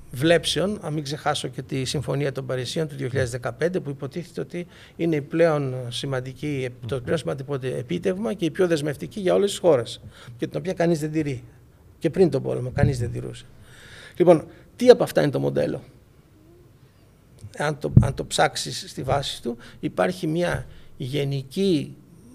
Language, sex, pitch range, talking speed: Greek, male, 130-165 Hz, 165 wpm